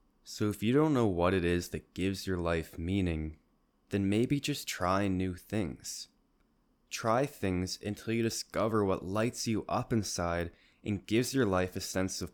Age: 20-39